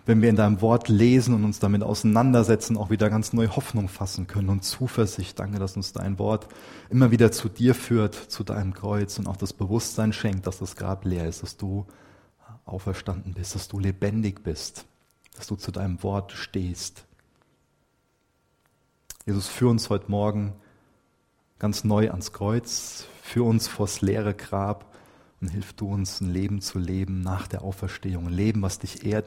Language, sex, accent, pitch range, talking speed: German, male, German, 95-110 Hz, 175 wpm